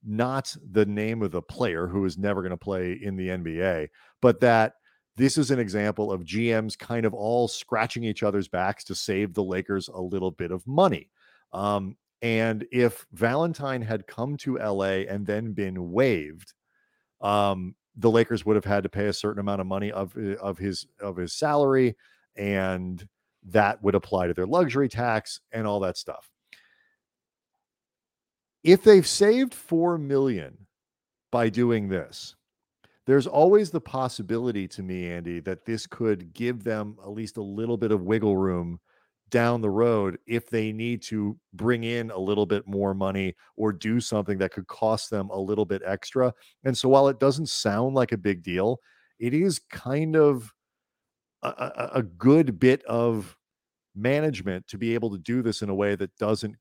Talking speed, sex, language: 175 wpm, male, English